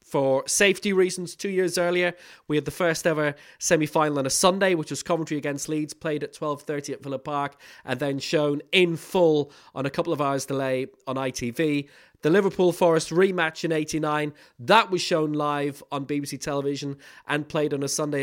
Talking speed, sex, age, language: 190 wpm, male, 30-49, English